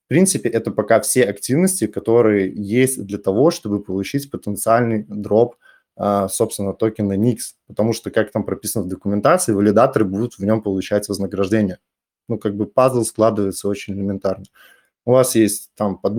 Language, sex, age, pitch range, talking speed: Russian, male, 20-39, 100-120 Hz, 155 wpm